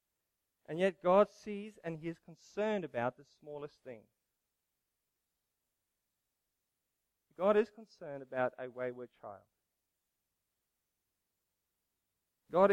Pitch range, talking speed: 135-180 Hz, 95 wpm